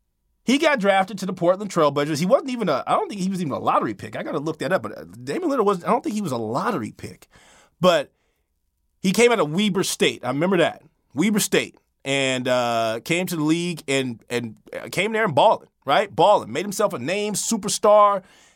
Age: 30-49